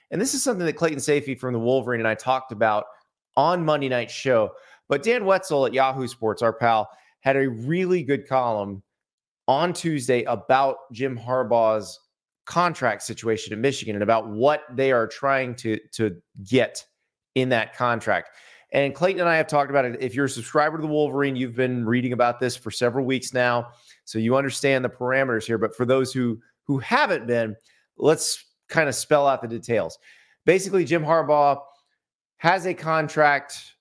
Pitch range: 115-145 Hz